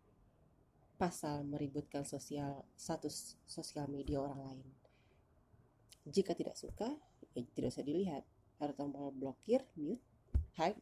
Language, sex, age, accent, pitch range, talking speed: Indonesian, female, 30-49, native, 105-160 Hz, 110 wpm